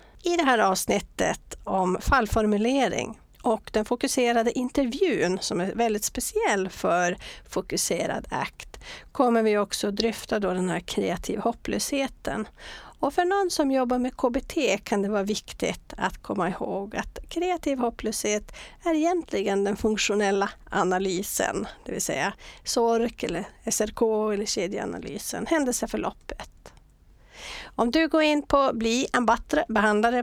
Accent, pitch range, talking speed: Swedish, 205-275 Hz, 125 wpm